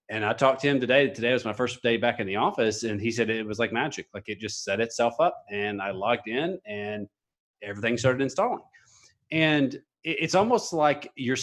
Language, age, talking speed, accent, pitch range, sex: English, 30-49, 215 wpm, American, 110-140 Hz, male